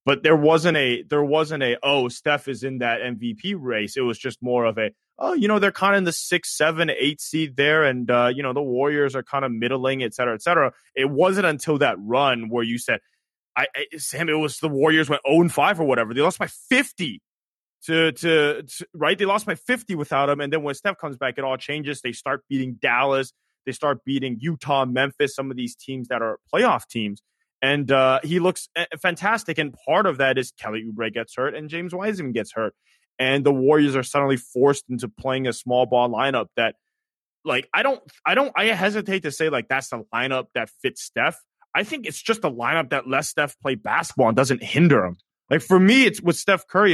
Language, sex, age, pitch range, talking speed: English, male, 20-39, 130-165 Hz, 225 wpm